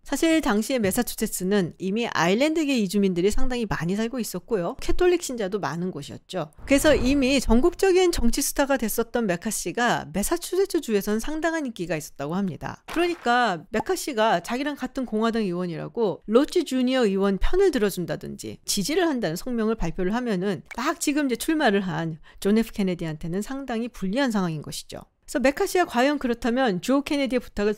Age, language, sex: 40-59, Korean, female